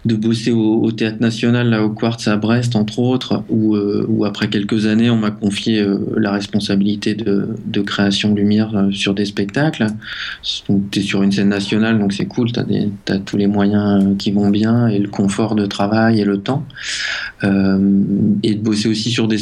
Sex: male